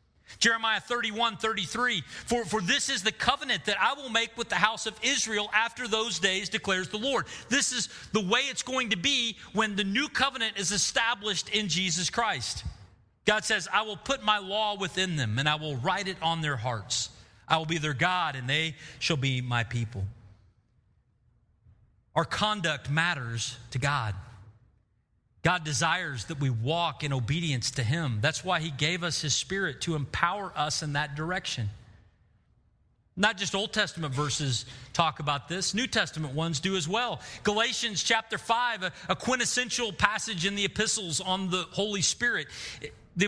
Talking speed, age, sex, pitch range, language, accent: 170 wpm, 40-59, male, 135-220 Hz, English, American